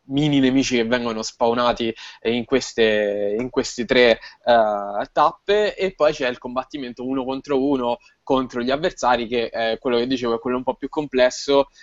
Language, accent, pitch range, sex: Italian, native, 120-140 Hz, male